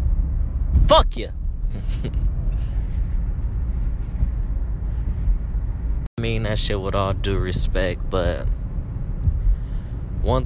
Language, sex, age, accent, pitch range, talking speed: English, male, 20-39, American, 90-105 Hz, 75 wpm